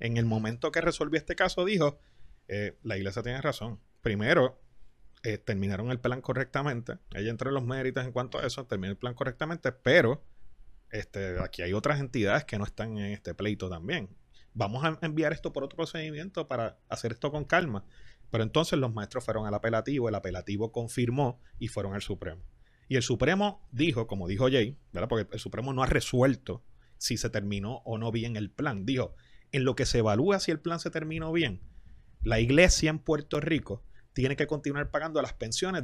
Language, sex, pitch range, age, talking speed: Spanish, male, 110-150 Hz, 30-49, 195 wpm